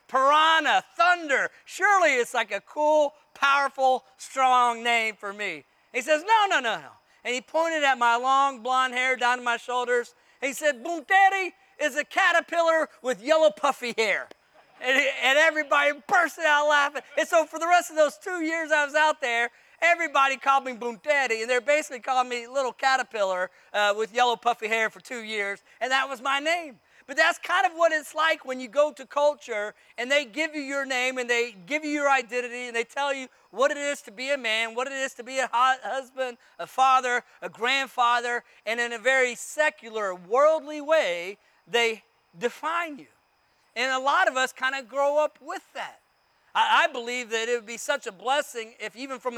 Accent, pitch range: American, 240-305 Hz